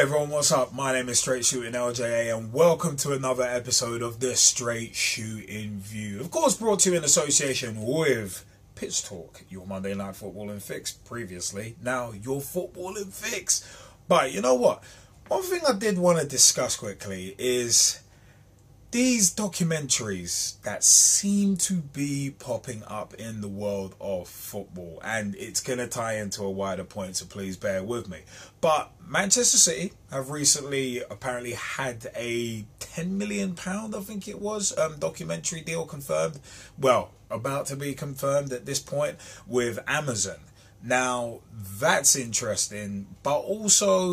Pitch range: 105-165 Hz